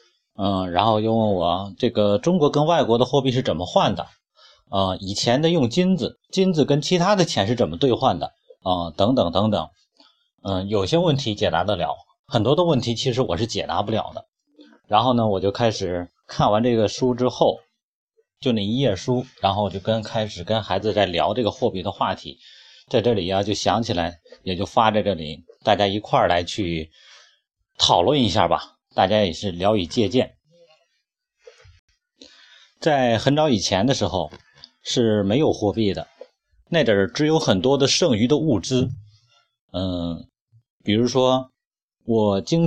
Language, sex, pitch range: Chinese, male, 100-150 Hz